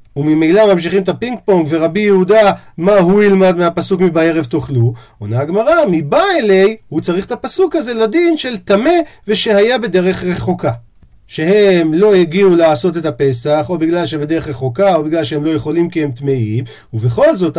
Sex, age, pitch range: male, 40-59, 155-205 Hz